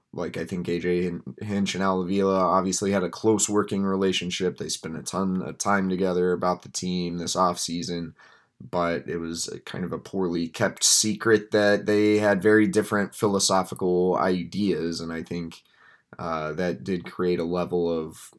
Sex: male